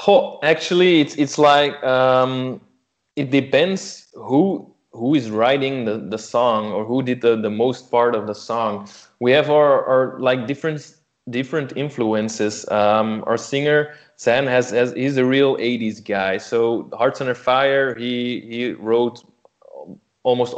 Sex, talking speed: male, 150 wpm